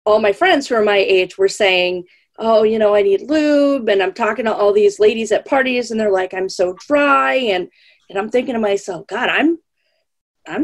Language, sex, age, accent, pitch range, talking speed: English, female, 30-49, American, 200-310 Hz, 220 wpm